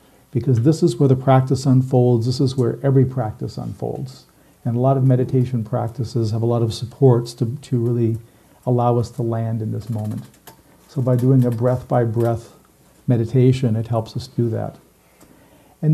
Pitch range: 120-135 Hz